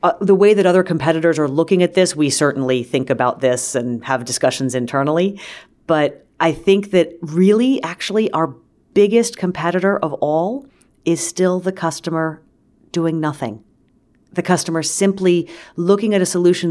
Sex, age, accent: female, 40-59, American